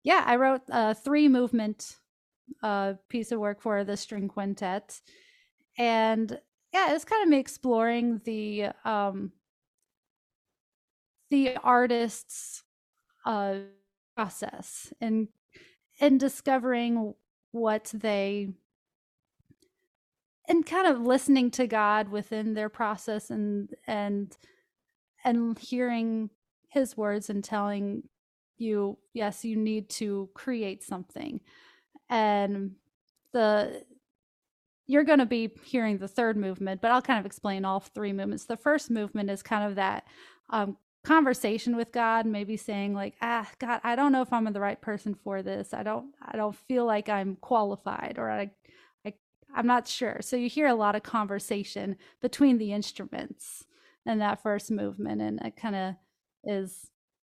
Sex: female